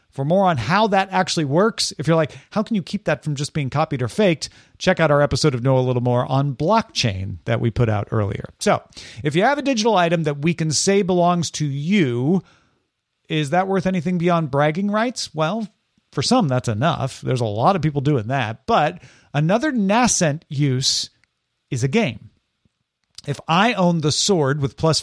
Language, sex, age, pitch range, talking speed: English, male, 40-59, 135-185 Hz, 200 wpm